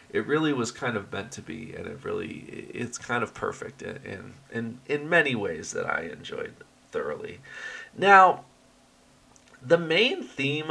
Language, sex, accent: English, male, American